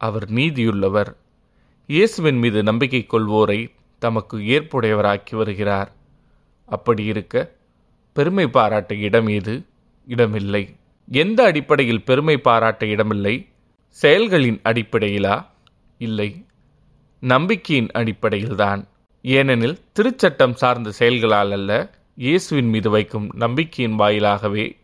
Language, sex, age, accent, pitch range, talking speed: Tamil, male, 20-39, native, 105-120 Hz, 80 wpm